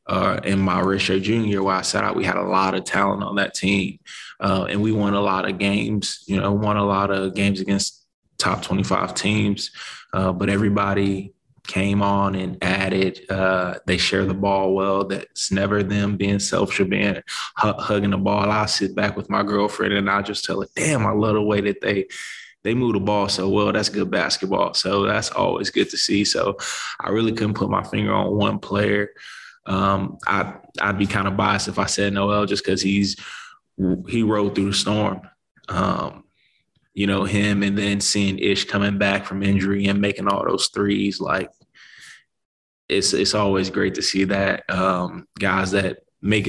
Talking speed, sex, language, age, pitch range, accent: 195 wpm, male, English, 20-39, 95-105 Hz, American